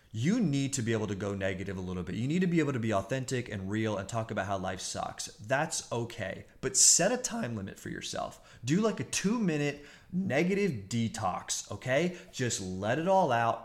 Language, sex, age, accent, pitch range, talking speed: English, male, 30-49, American, 105-135 Hz, 210 wpm